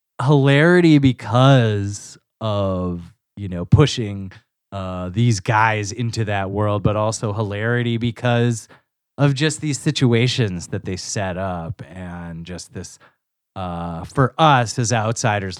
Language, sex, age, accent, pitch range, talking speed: English, male, 30-49, American, 95-125 Hz, 125 wpm